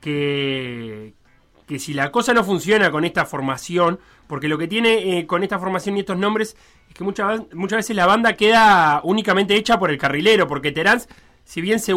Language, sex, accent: Spanish, male, Argentinian